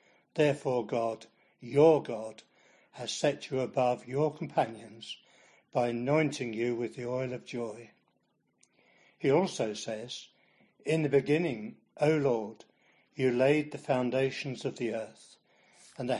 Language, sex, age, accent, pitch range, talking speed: English, male, 60-79, British, 120-150 Hz, 130 wpm